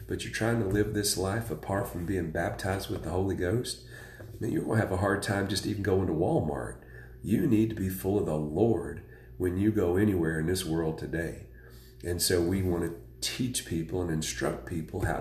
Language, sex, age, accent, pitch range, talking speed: English, male, 40-59, American, 90-110 Hz, 215 wpm